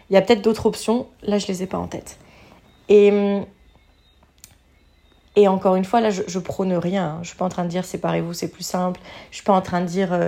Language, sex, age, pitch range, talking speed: French, female, 30-49, 165-190 Hz, 265 wpm